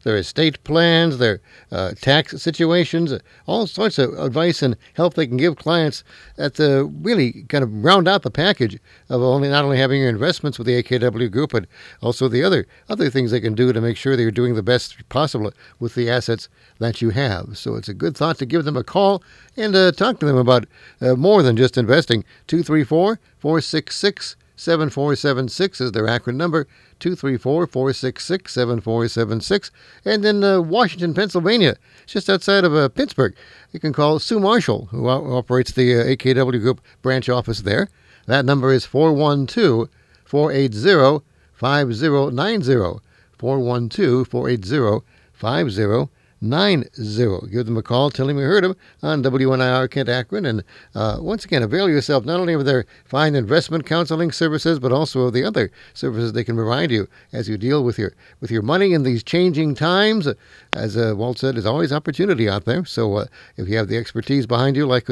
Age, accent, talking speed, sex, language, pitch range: 60-79, American, 180 wpm, male, English, 120-160 Hz